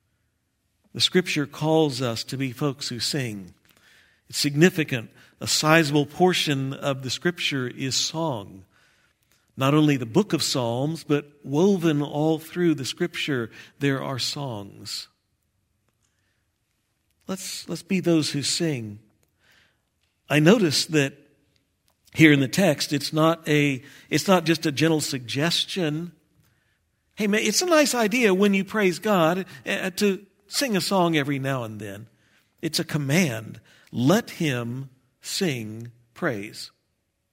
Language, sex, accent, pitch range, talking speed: English, male, American, 120-165 Hz, 130 wpm